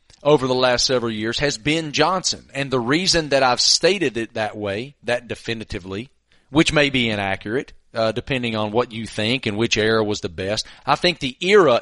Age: 40-59